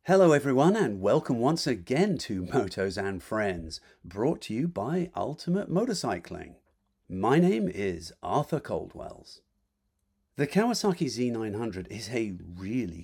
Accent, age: British, 50-69